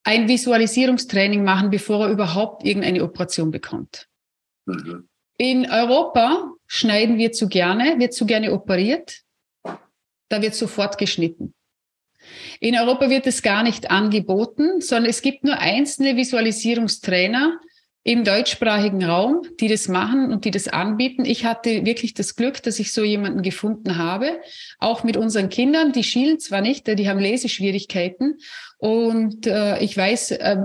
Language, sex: German, female